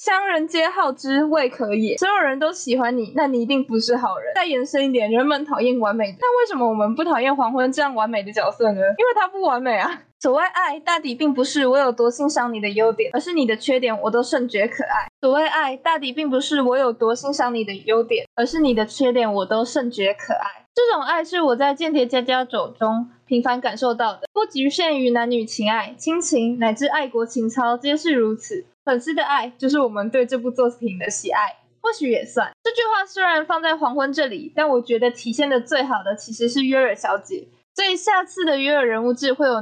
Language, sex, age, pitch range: Chinese, female, 20-39, 235-310 Hz